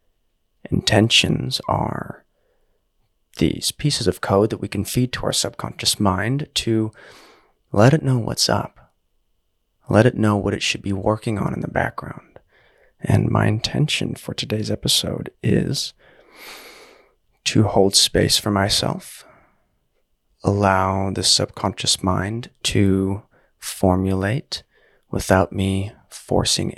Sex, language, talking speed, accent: male, English, 120 wpm, American